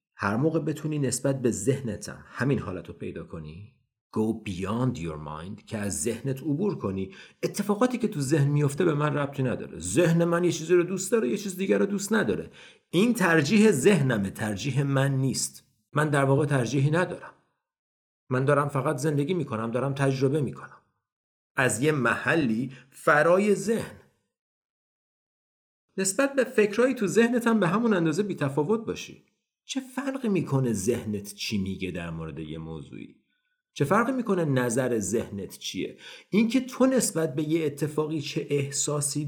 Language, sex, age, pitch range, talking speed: Persian, male, 50-69, 130-190 Hz, 145 wpm